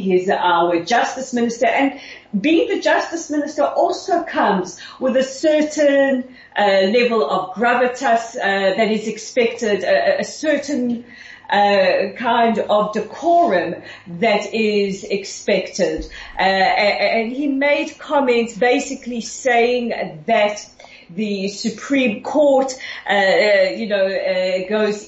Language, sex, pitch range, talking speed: English, female, 205-255 Hz, 115 wpm